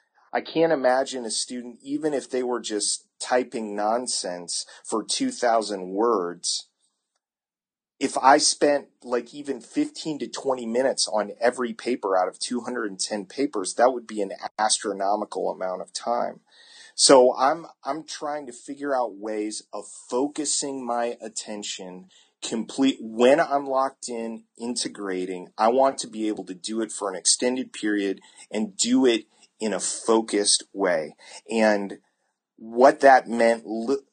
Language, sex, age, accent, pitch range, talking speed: English, male, 30-49, American, 105-130 Hz, 140 wpm